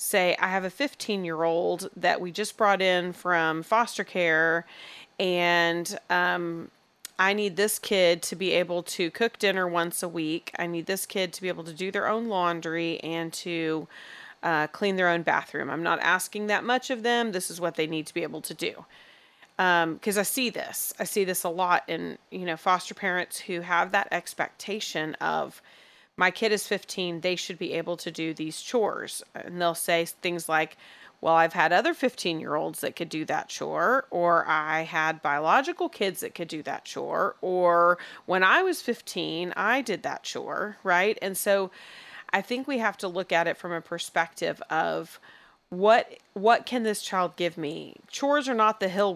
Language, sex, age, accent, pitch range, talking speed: English, female, 30-49, American, 170-205 Hz, 195 wpm